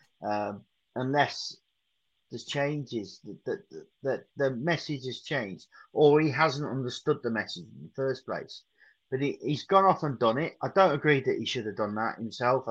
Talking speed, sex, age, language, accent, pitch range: 185 wpm, male, 30-49, English, British, 115-145 Hz